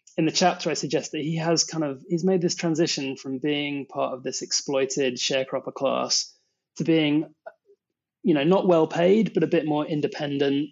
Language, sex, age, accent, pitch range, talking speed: English, male, 20-39, British, 130-160 Hz, 190 wpm